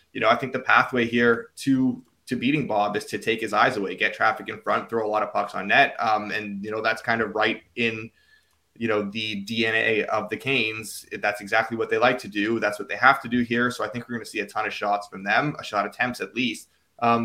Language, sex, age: English, male, 20-39